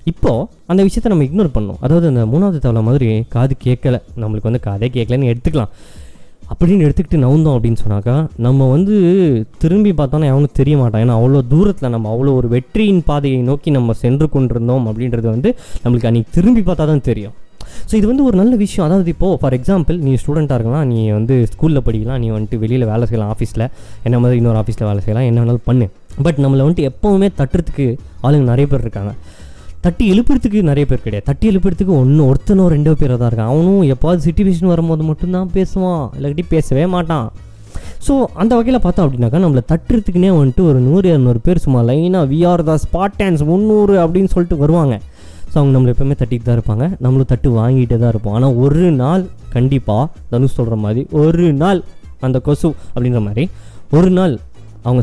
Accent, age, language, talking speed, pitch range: native, 20-39, Tamil, 175 wpm, 115-170 Hz